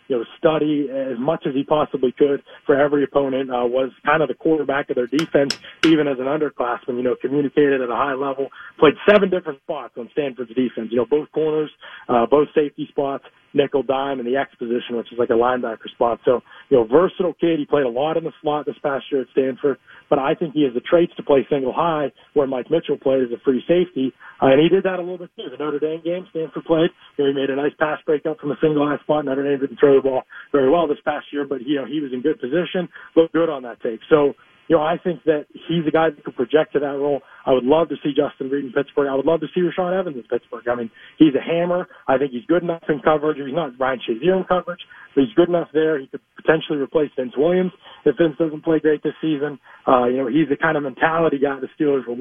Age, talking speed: 40-59, 260 wpm